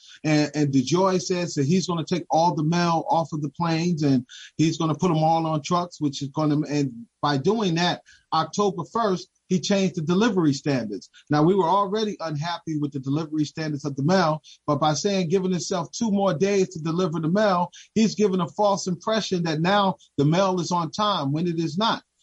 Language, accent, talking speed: English, American, 215 wpm